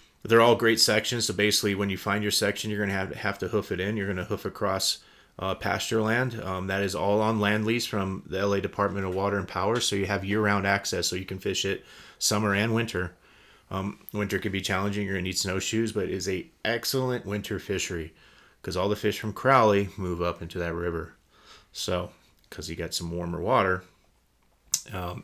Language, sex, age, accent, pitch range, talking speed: English, male, 30-49, American, 90-105 Hz, 220 wpm